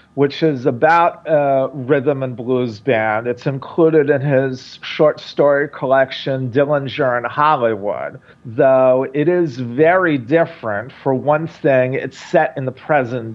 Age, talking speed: 40-59, 140 wpm